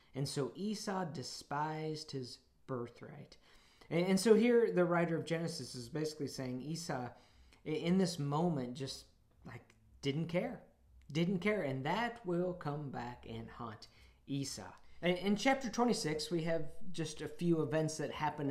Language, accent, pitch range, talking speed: English, American, 130-170 Hz, 145 wpm